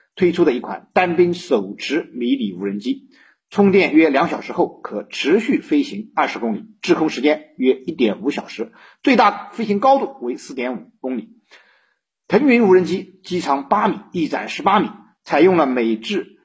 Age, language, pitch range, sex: 50-69, Chinese, 175-260 Hz, male